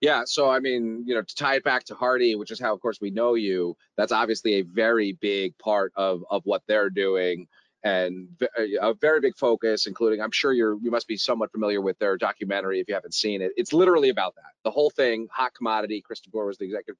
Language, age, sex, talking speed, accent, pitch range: English, 30-49, male, 235 wpm, American, 105-180 Hz